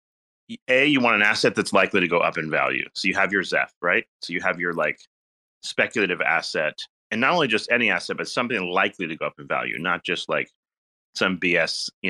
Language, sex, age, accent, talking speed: English, male, 30-49, American, 225 wpm